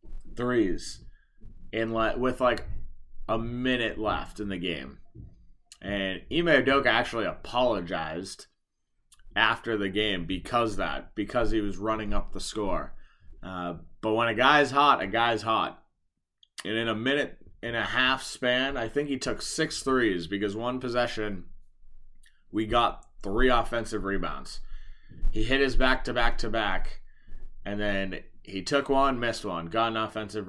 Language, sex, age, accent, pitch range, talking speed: English, male, 30-49, American, 100-125 Hz, 150 wpm